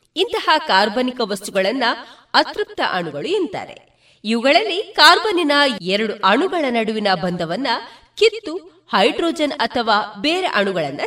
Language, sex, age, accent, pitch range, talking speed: Kannada, female, 30-49, native, 210-335 Hz, 85 wpm